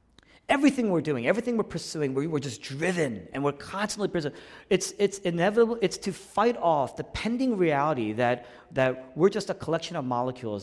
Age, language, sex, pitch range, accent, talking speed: 40-59, English, male, 125-195 Hz, American, 175 wpm